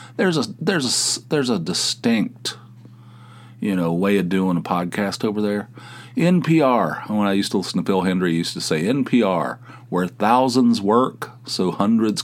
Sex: male